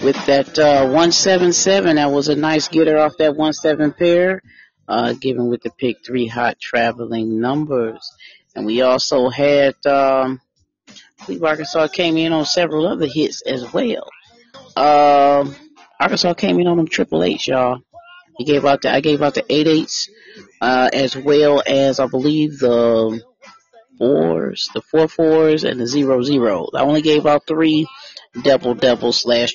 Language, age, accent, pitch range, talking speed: English, 40-59, American, 130-165 Hz, 160 wpm